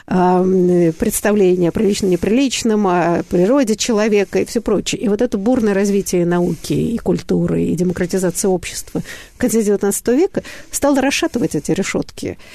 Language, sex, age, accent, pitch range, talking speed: Russian, female, 50-69, native, 185-240 Hz, 135 wpm